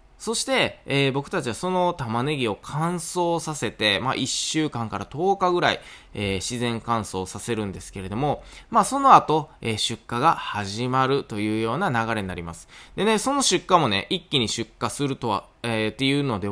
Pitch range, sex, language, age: 110-170 Hz, male, Japanese, 20-39